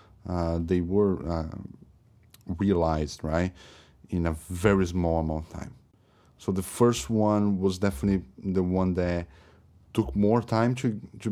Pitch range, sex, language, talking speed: 85-100 Hz, male, English, 145 wpm